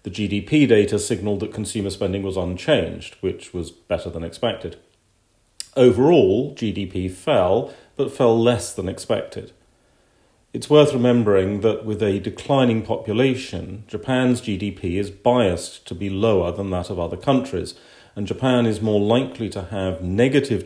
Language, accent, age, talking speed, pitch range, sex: English, British, 40-59, 145 wpm, 95-120 Hz, male